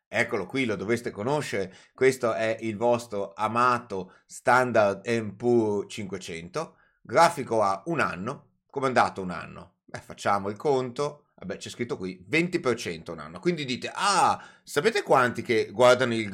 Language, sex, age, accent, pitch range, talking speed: Italian, male, 30-49, native, 100-130 Hz, 150 wpm